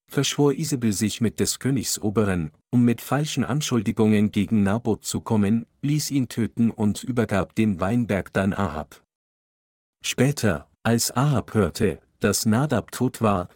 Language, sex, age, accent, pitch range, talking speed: German, male, 50-69, German, 100-125 Hz, 140 wpm